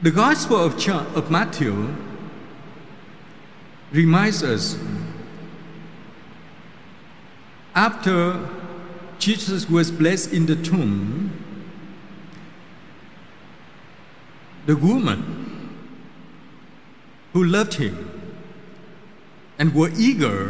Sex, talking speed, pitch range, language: male, 60 wpm, 155-205 Hz, Vietnamese